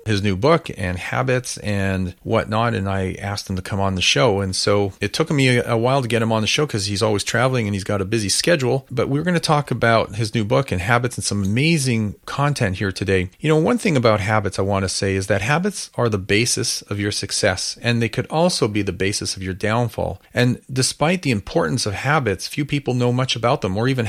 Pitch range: 100-125 Hz